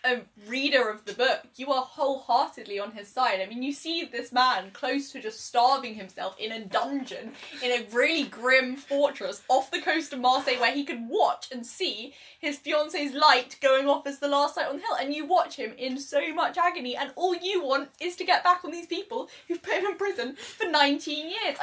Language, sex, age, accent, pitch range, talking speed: English, female, 10-29, British, 210-285 Hz, 220 wpm